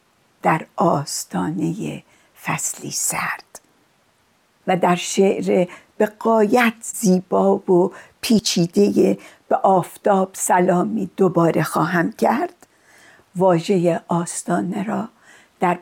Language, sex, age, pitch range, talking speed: Persian, female, 60-79, 175-225 Hz, 80 wpm